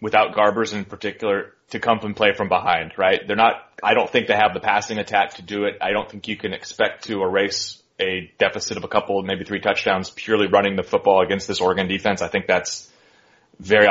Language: English